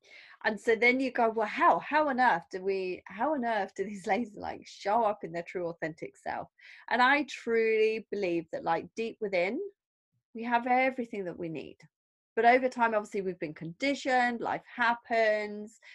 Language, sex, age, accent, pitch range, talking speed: English, female, 30-49, British, 185-250 Hz, 185 wpm